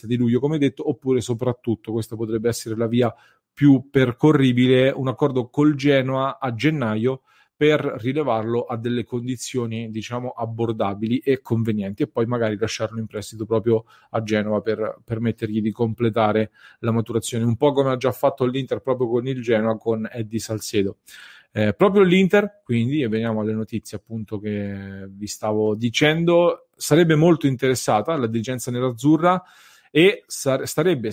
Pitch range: 115-135 Hz